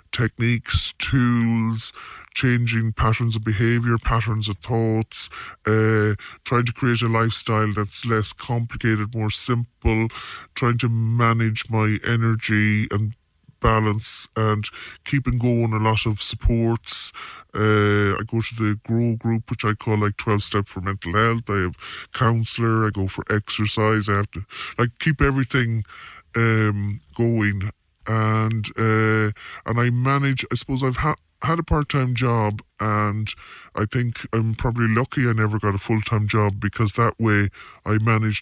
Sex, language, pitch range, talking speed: female, English, 105-120 Hz, 150 wpm